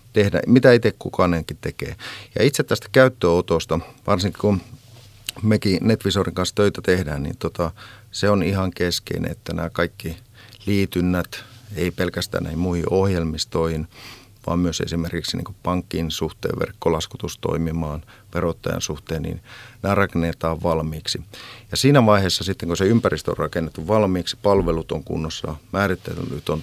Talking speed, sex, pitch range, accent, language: 130 wpm, male, 85-110 Hz, native, Finnish